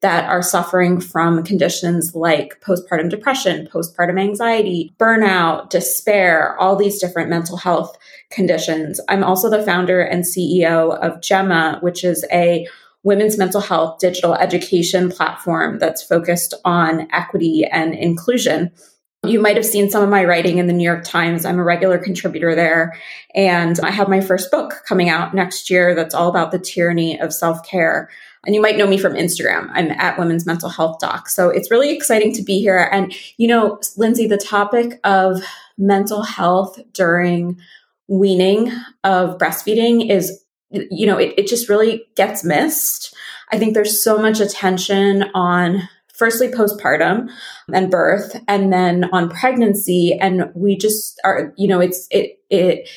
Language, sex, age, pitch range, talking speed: English, female, 20-39, 175-210 Hz, 160 wpm